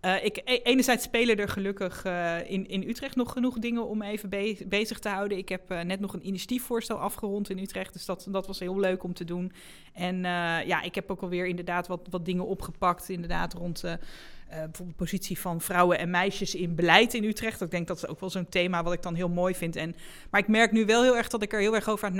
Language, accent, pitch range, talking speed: Dutch, Dutch, 175-210 Hz, 255 wpm